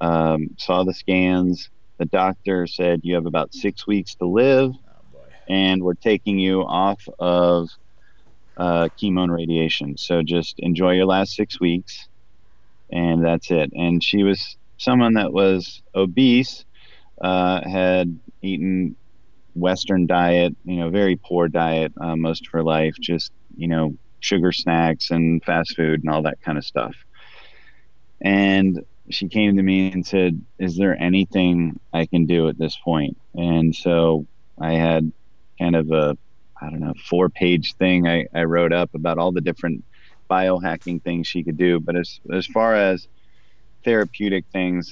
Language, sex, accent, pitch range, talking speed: English, male, American, 85-95 Hz, 160 wpm